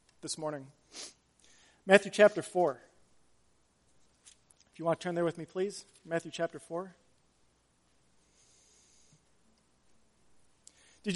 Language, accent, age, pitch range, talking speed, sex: English, American, 40-59, 155-200 Hz, 95 wpm, male